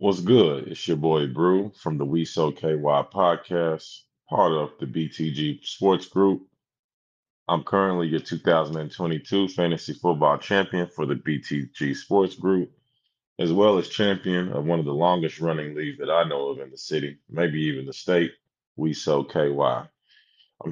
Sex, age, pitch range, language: male, 20-39, 80-100 Hz, English